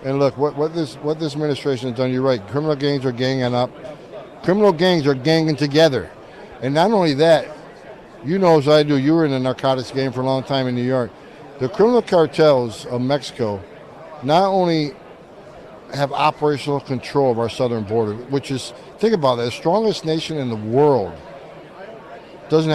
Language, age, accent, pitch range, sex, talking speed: English, 60-79, American, 125-155 Hz, male, 185 wpm